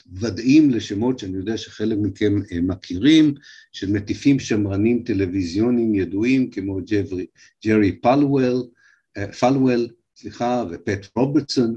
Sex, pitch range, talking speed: male, 95-125 Hz, 100 wpm